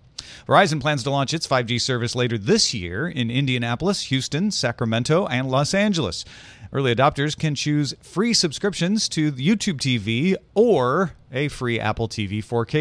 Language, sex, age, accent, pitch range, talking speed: English, male, 40-59, American, 110-145 Hz, 150 wpm